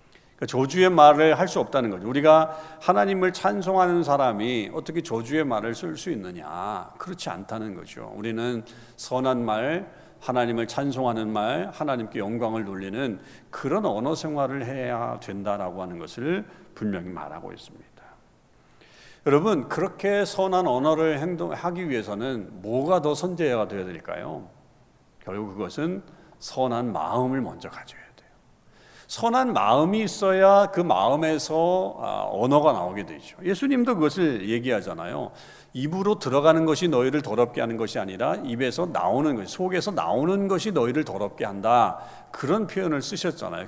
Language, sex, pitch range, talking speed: English, male, 115-180 Hz, 115 wpm